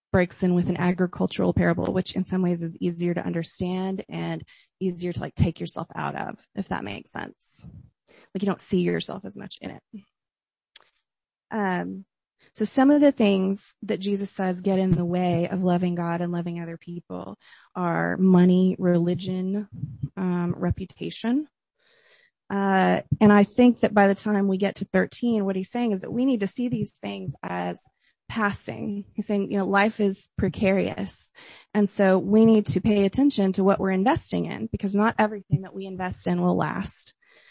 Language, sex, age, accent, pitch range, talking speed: English, female, 20-39, American, 175-205 Hz, 180 wpm